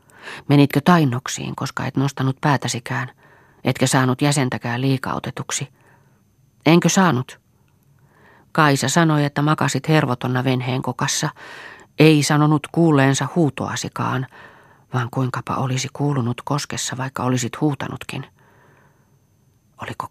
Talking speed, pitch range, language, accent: 95 wpm, 125-145 Hz, Finnish, native